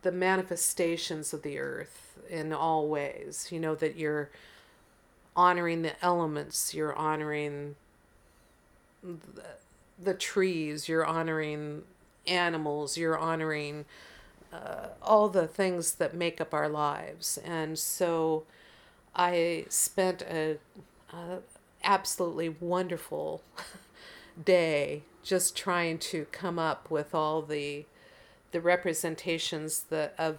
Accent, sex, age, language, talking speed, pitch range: American, female, 50-69, English, 105 wpm, 155-180 Hz